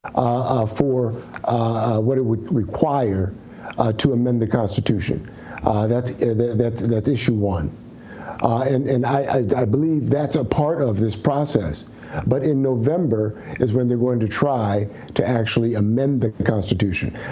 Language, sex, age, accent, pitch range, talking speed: English, male, 60-79, American, 115-140 Hz, 170 wpm